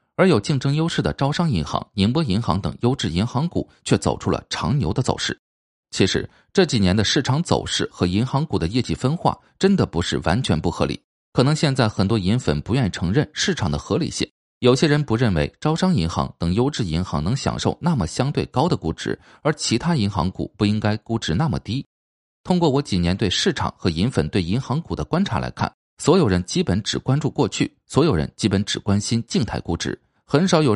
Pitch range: 90-135 Hz